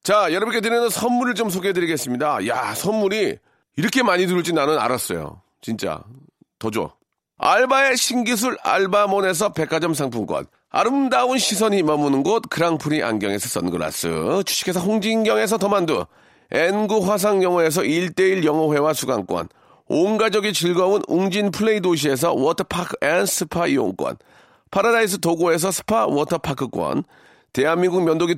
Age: 40-59